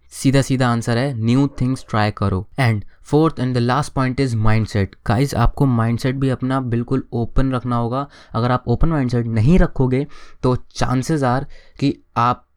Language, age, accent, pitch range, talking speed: Hindi, 20-39, native, 120-150 Hz, 170 wpm